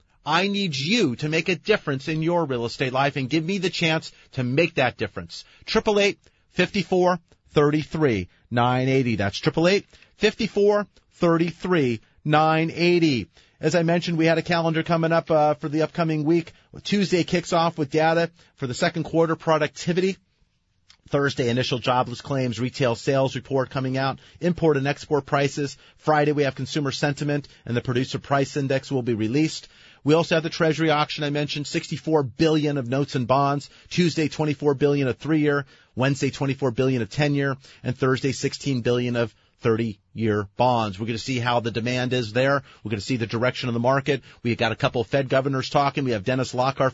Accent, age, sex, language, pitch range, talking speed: American, 40-59, male, English, 125-160 Hz, 190 wpm